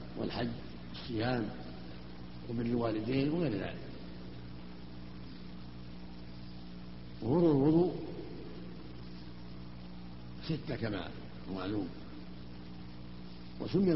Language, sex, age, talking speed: Arabic, male, 70-89, 50 wpm